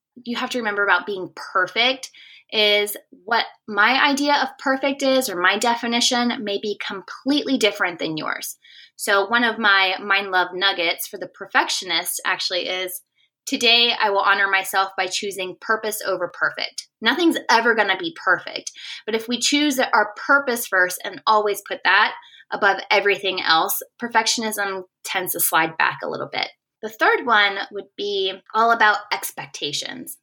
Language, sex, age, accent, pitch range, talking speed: English, female, 20-39, American, 195-255 Hz, 160 wpm